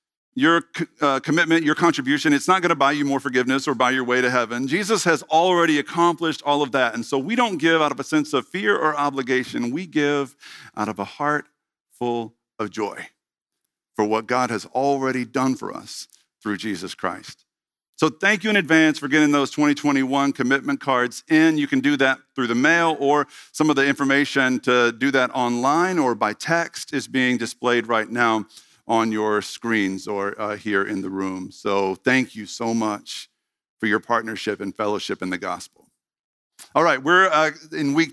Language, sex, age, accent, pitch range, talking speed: English, male, 50-69, American, 120-150 Hz, 190 wpm